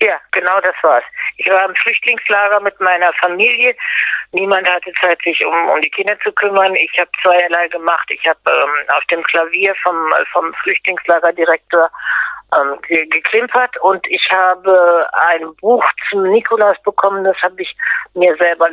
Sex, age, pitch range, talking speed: female, 60-79, 170-200 Hz, 155 wpm